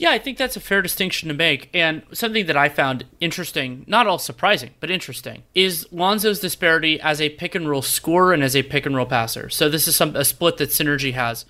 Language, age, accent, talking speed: English, 30-49, American, 230 wpm